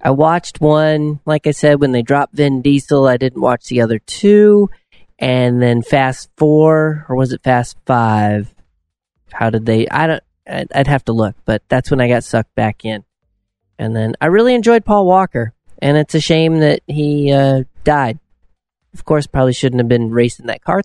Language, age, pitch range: English, 30-49, 115-150 Hz